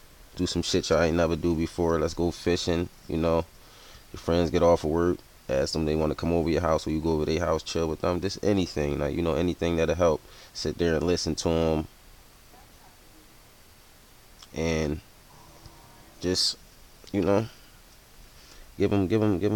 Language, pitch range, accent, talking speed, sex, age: English, 75-90 Hz, American, 185 wpm, male, 20-39